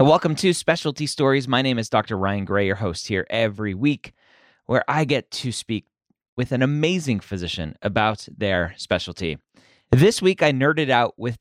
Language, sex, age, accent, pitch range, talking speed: English, male, 30-49, American, 105-150 Hz, 175 wpm